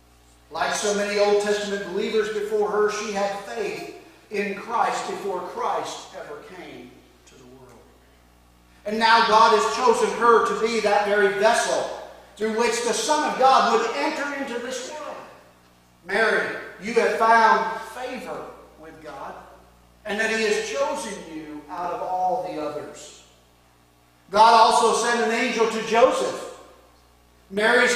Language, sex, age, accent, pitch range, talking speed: English, male, 40-59, American, 145-230 Hz, 145 wpm